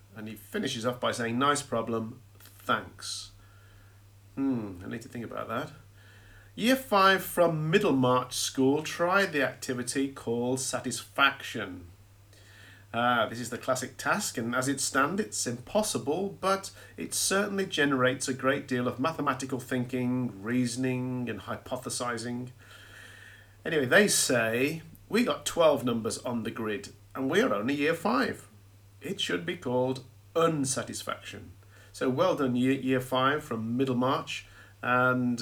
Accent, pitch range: British, 105-130 Hz